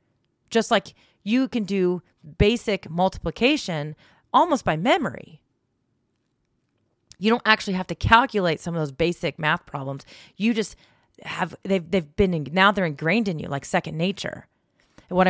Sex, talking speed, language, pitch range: female, 155 wpm, English, 165-205 Hz